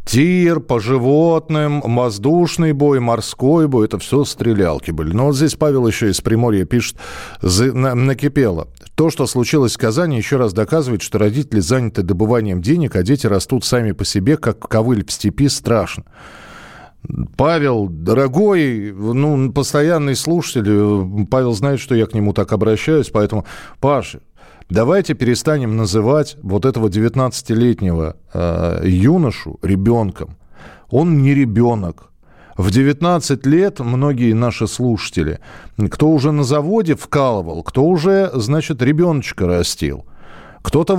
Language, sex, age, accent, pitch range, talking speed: Russian, male, 40-59, native, 105-150 Hz, 130 wpm